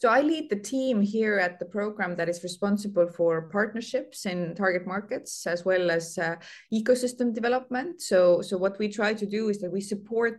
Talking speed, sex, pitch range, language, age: 195 wpm, female, 175-205 Hz, English, 20-39